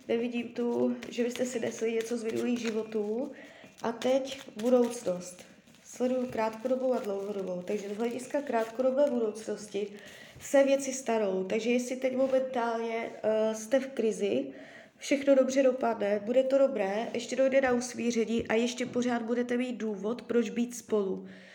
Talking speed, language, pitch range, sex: 140 wpm, Czech, 220-255 Hz, female